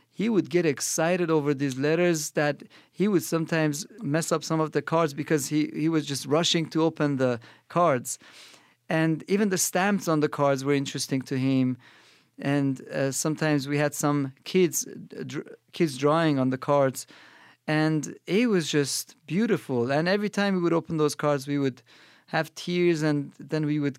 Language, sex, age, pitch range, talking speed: English, male, 40-59, 140-170 Hz, 180 wpm